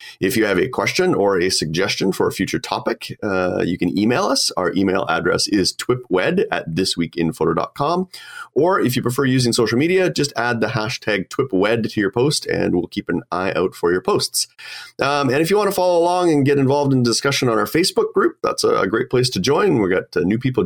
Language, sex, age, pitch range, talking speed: English, male, 30-49, 115-170 Hz, 220 wpm